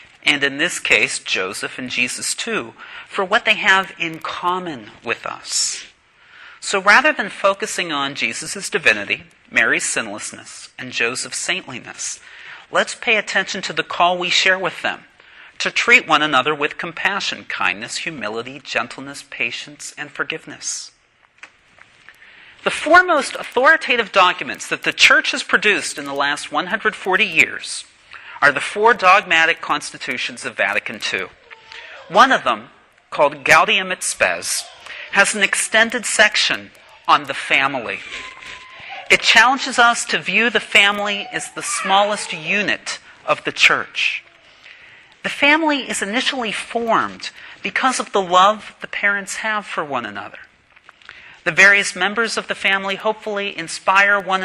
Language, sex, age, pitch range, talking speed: English, male, 40-59, 170-220 Hz, 140 wpm